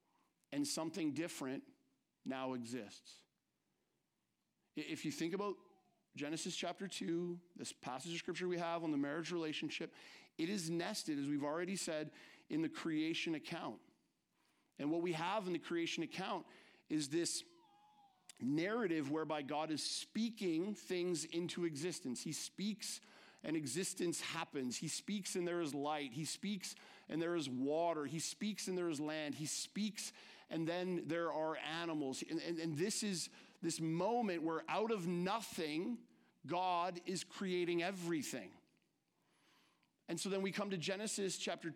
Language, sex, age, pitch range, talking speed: English, male, 50-69, 160-205 Hz, 150 wpm